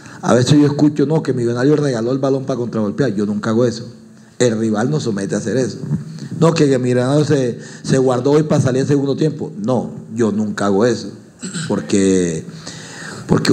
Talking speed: 185 wpm